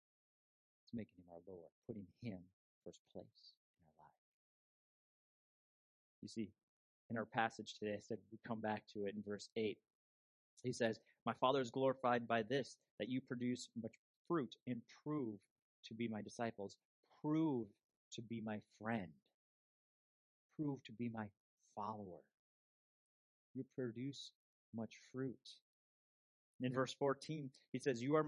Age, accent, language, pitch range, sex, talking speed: 30-49, American, English, 100-135 Hz, male, 140 wpm